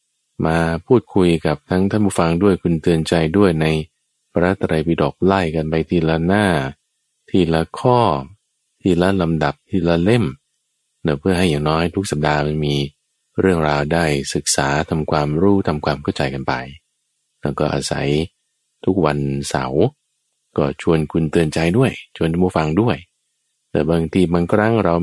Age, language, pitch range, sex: 20-39, Thai, 75-90 Hz, male